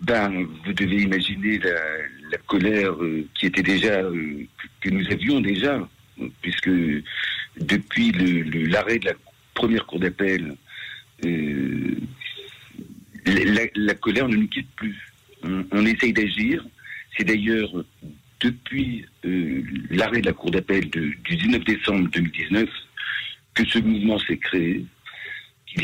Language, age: French, 60-79